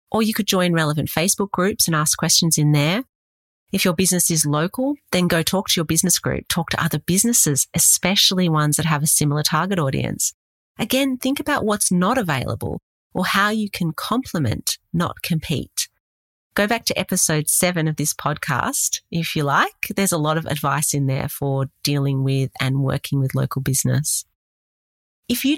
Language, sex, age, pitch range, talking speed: English, female, 30-49, 145-190 Hz, 180 wpm